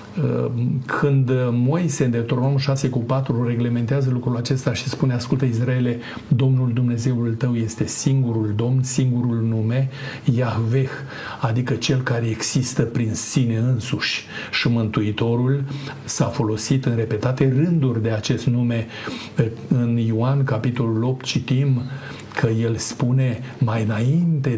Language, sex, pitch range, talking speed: Romanian, male, 115-135 Hz, 115 wpm